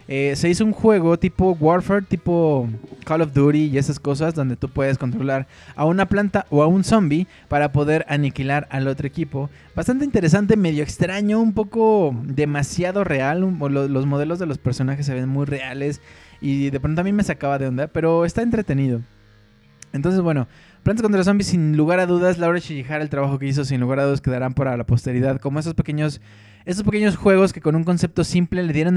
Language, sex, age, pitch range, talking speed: Spanish, male, 20-39, 135-175 Hz, 205 wpm